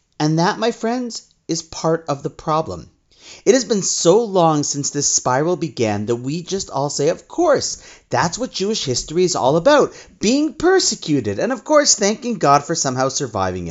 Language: English